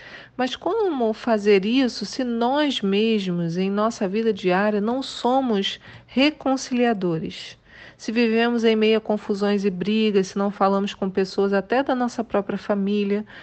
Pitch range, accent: 195-235 Hz, Brazilian